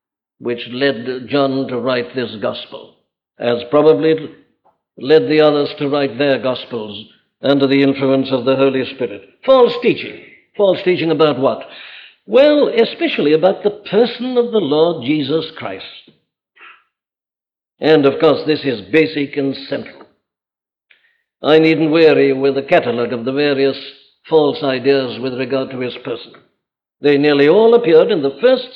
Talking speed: 145 wpm